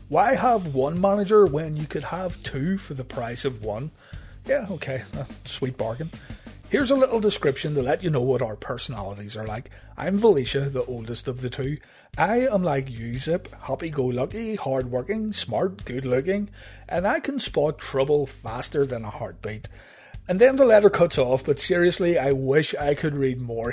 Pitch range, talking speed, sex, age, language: 125-175 Hz, 180 wpm, male, 30-49, English